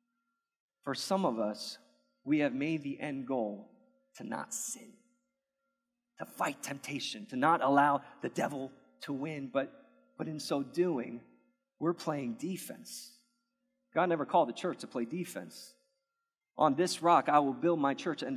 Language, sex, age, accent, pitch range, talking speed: English, male, 30-49, American, 140-220 Hz, 155 wpm